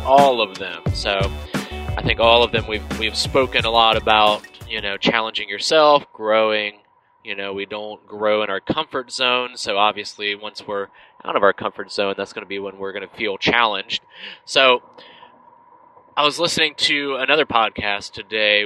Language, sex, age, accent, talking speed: English, male, 20-39, American, 180 wpm